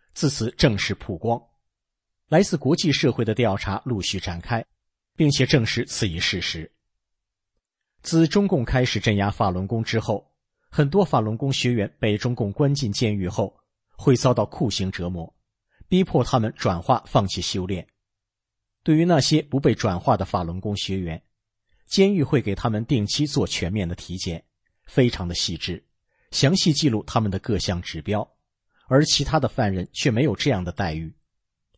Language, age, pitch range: English, 50-69, 95-135 Hz